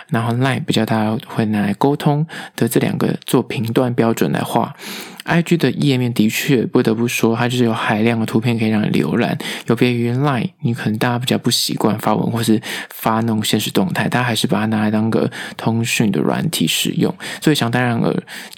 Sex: male